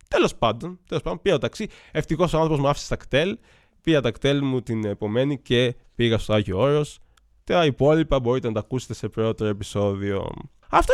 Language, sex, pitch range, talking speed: Greek, male, 110-185 Hz, 190 wpm